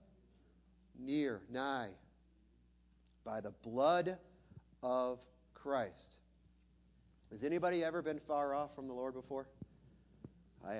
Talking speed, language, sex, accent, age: 100 wpm, English, male, American, 50-69